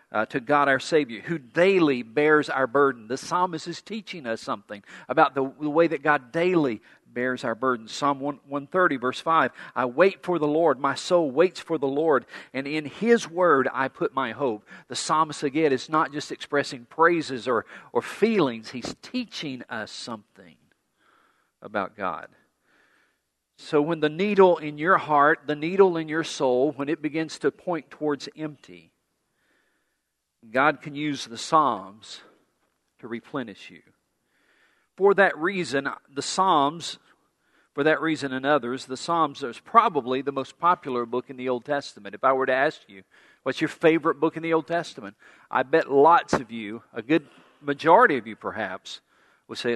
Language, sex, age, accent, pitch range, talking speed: English, male, 50-69, American, 130-160 Hz, 170 wpm